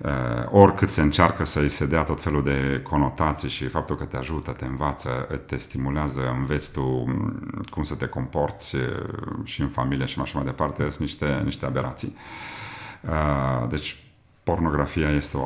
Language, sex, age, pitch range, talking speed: Romanian, male, 40-59, 70-95 Hz, 165 wpm